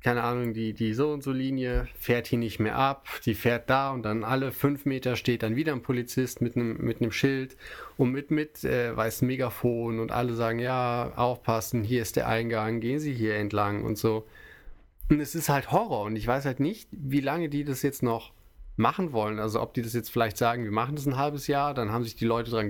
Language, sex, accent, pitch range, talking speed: German, male, German, 110-135 Hz, 225 wpm